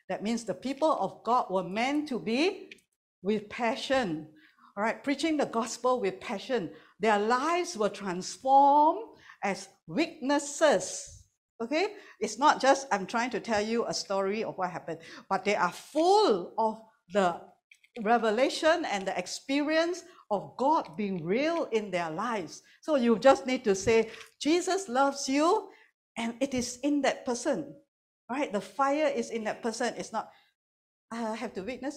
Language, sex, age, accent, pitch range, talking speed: English, female, 60-79, Malaysian, 195-290 Hz, 155 wpm